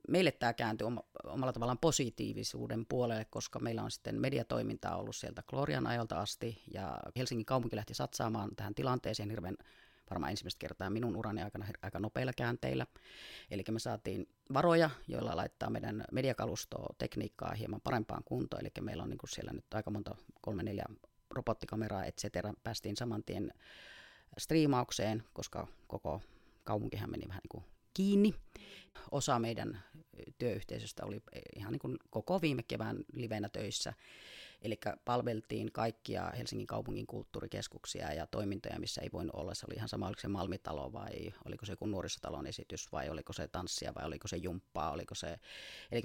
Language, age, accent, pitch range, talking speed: Finnish, 30-49, native, 100-120 Hz, 150 wpm